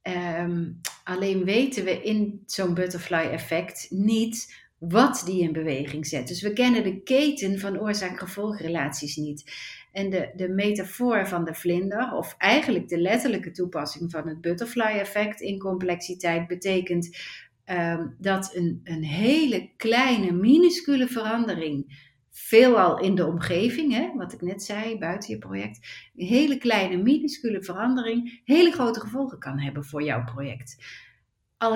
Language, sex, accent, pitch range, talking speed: Dutch, female, Dutch, 175-225 Hz, 140 wpm